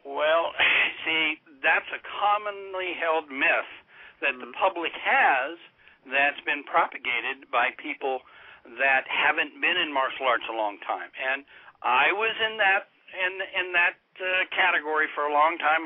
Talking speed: 150 wpm